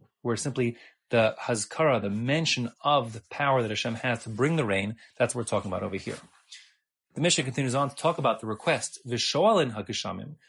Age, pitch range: 30-49, 105-130 Hz